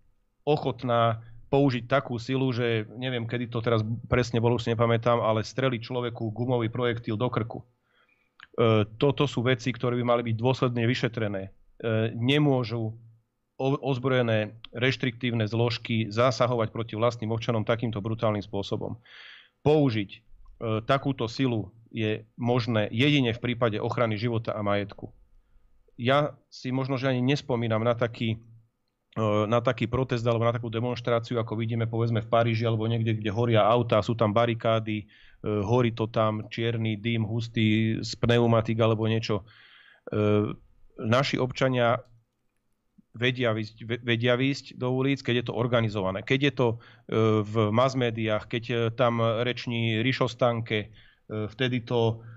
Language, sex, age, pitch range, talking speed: Slovak, male, 40-59, 110-125 Hz, 135 wpm